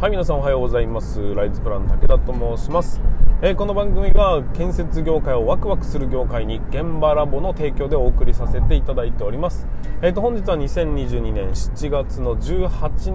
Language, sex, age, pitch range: Japanese, male, 20-39, 120-160 Hz